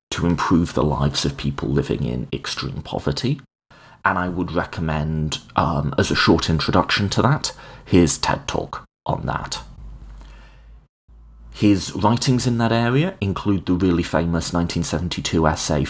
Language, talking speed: English, 140 wpm